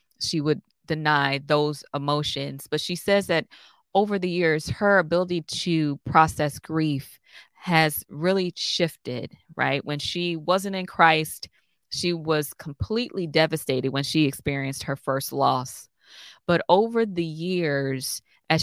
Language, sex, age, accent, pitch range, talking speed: English, female, 20-39, American, 150-185 Hz, 130 wpm